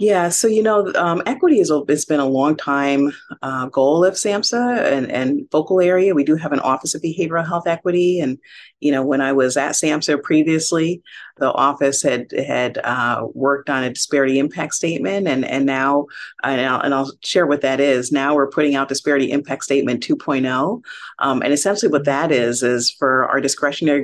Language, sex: English, female